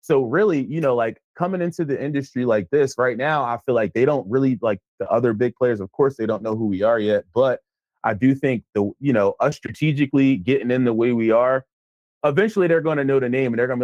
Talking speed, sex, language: 250 wpm, male, English